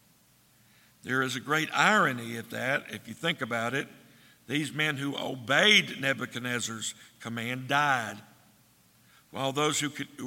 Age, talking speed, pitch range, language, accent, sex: 60-79, 130 wpm, 130-175 Hz, English, American, male